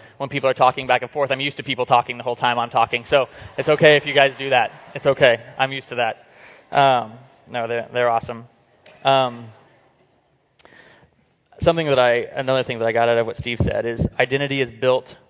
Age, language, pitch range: 20-39, English, 115-135 Hz